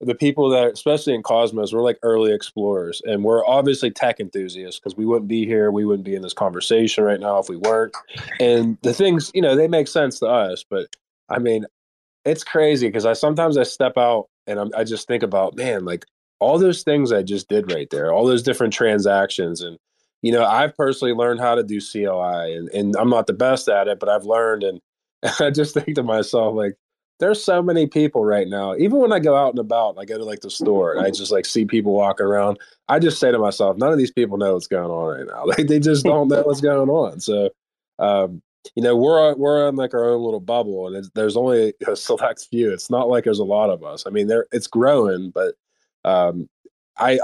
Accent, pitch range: American, 105-140 Hz